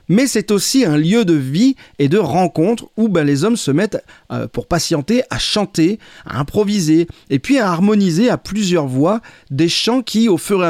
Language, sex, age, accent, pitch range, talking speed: French, male, 40-59, French, 150-210 Hz, 200 wpm